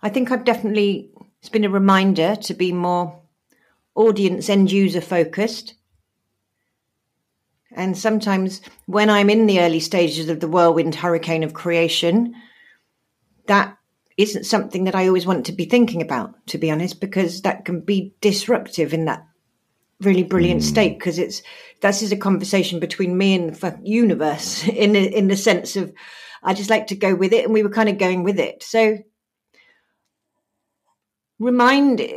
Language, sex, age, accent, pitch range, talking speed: English, female, 50-69, British, 175-225 Hz, 160 wpm